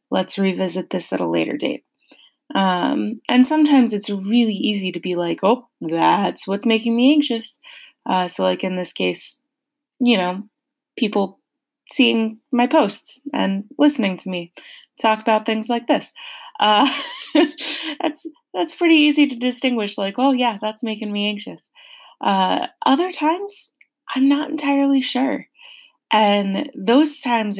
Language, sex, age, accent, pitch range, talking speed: English, female, 20-39, American, 195-290 Hz, 145 wpm